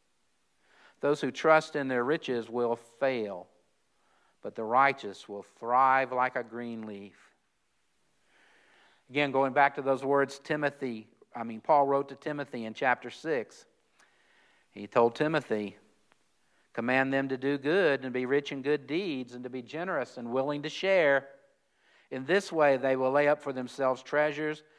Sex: male